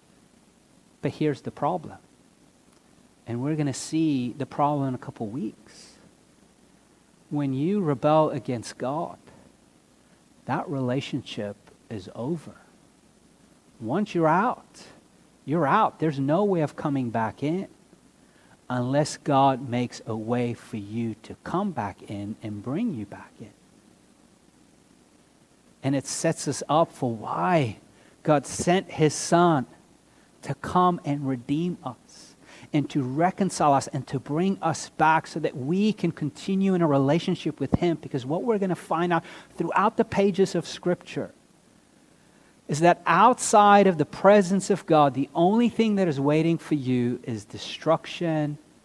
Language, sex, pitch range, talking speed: English, male, 130-170 Hz, 145 wpm